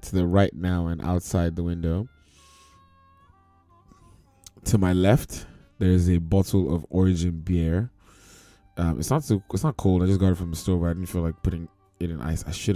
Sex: male